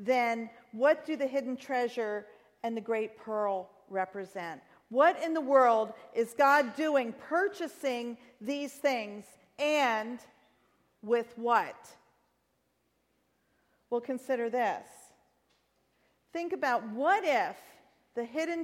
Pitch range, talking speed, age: 235-310 Hz, 105 wpm, 40-59